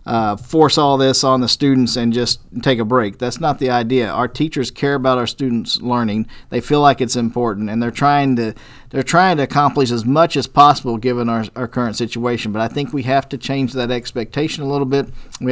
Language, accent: English, American